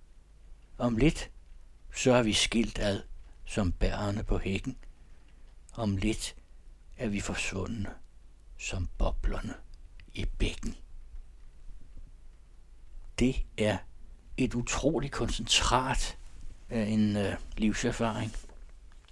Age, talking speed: 60-79, 90 wpm